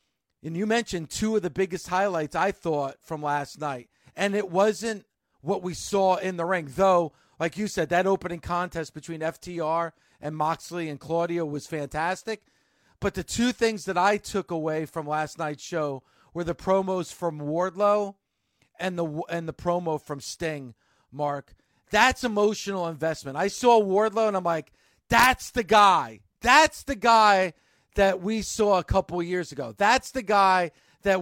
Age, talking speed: 40-59, 170 wpm